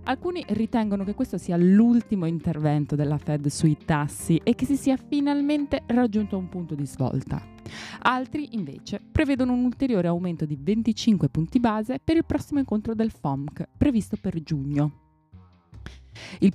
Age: 20-39